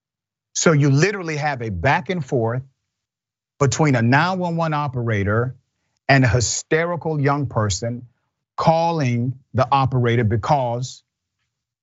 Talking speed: 105 wpm